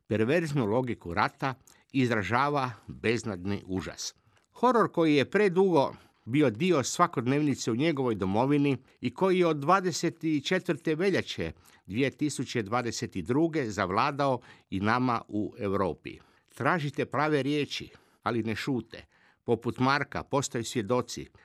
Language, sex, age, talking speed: Croatian, male, 50-69, 105 wpm